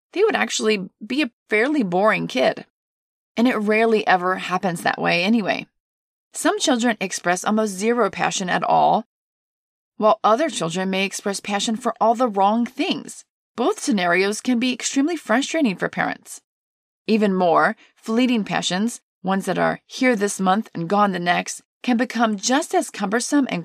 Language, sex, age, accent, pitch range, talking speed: English, female, 30-49, American, 195-245 Hz, 160 wpm